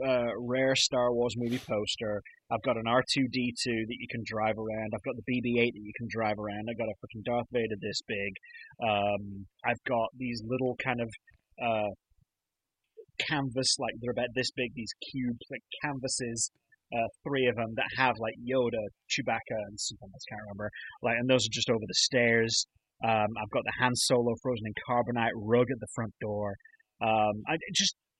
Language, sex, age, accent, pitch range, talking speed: English, male, 30-49, British, 115-140 Hz, 190 wpm